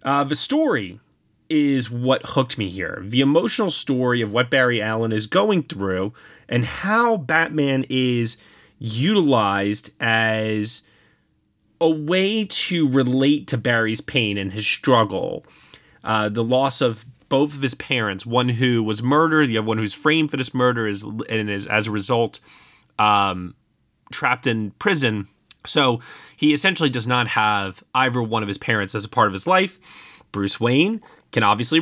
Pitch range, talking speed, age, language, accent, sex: 110-150 Hz, 160 wpm, 30-49, English, American, male